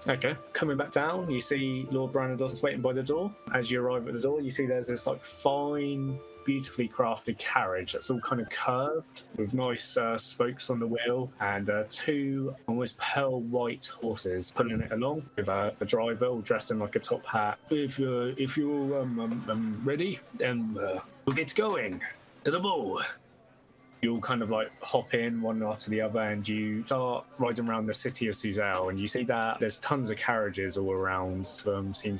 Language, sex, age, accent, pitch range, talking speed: English, male, 20-39, British, 105-130 Hz, 200 wpm